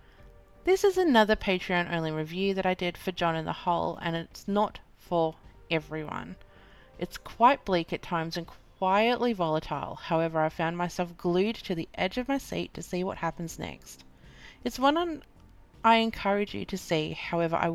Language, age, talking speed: English, 30-49, 170 wpm